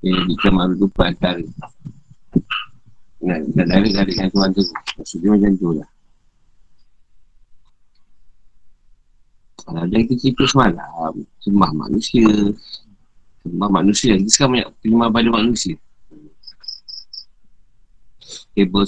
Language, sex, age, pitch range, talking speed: Malay, male, 50-69, 95-115 Hz, 90 wpm